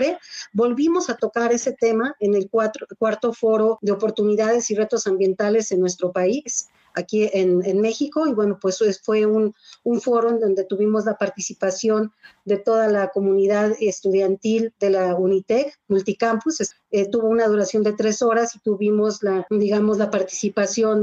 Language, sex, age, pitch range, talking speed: Spanish, female, 40-59, 190-220 Hz, 160 wpm